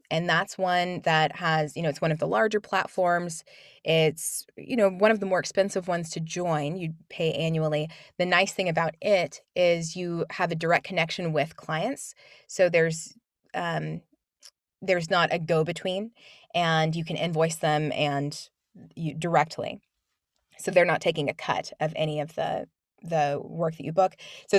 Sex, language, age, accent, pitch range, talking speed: female, English, 20-39, American, 155-190 Hz, 175 wpm